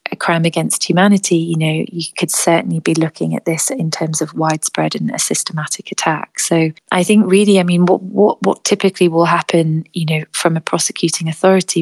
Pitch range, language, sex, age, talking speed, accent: 160-175 Hz, English, female, 30-49, 195 wpm, British